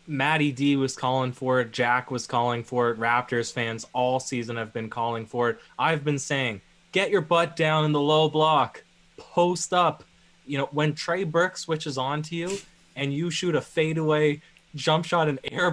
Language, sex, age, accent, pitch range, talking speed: English, male, 20-39, American, 120-155 Hz, 195 wpm